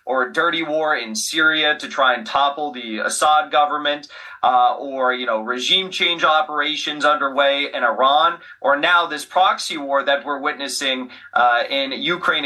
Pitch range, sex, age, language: 140-195 Hz, male, 30-49, English